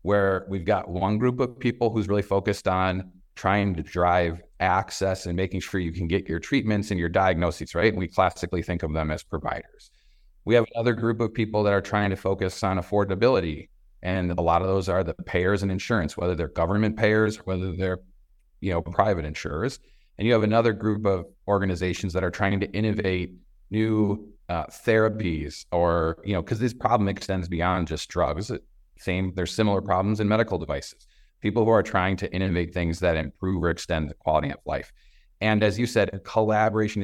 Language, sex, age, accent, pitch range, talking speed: English, male, 30-49, American, 90-105 Hz, 195 wpm